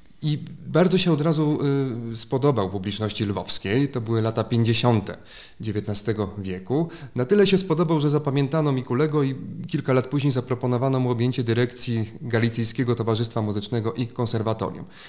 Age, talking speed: 30-49, 135 wpm